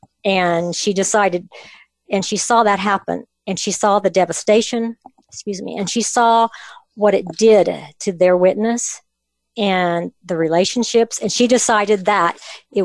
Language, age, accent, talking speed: English, 50-69, American, 150 wpm